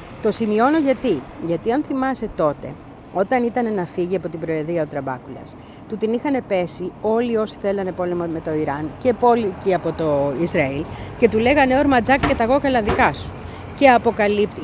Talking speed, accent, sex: 180 wpm, native, female